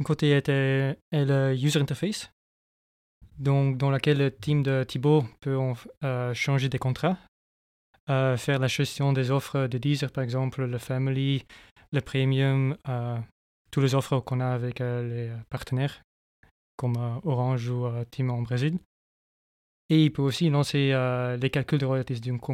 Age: 20-39